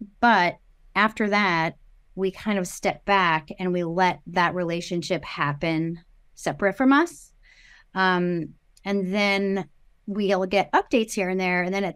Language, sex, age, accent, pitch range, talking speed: English, female, 30-49, American, 180-220 Hz, 145 wpm